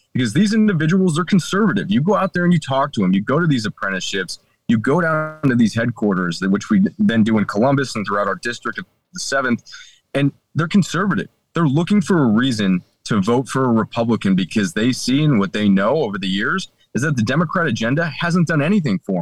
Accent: American